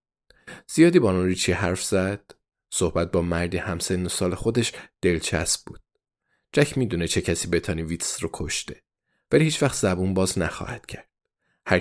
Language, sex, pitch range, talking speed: Persian, male, 90-115 Hz, 145 wpm